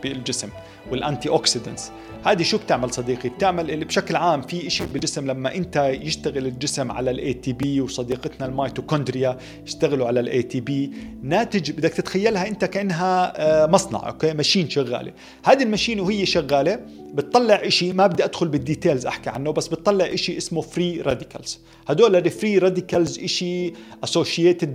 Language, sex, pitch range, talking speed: Arabic, male, 135-170 Hz, 145 wpm